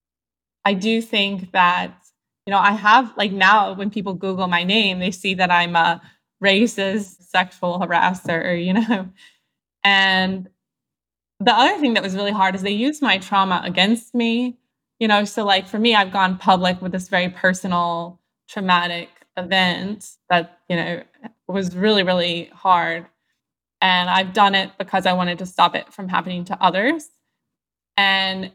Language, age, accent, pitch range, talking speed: English, 20-39, American, 180-215 Hz, 160 wpm